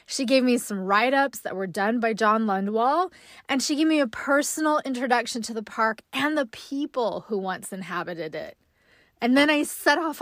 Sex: female